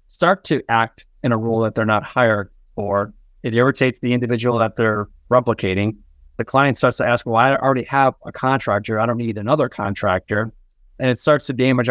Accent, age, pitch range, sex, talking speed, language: American, 30-49, 105-130 Hz, male, 195 wpm, English